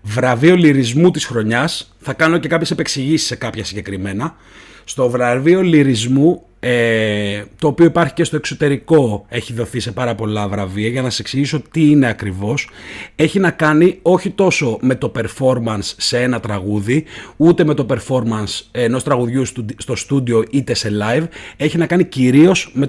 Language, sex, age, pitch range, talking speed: Greek, male, 30-49, 120-175 Hz, 160 wpm